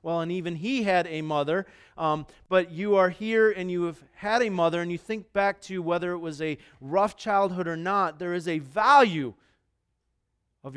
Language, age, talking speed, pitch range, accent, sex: English, 40-59, 200 wpm, 160-210 Hz, American, male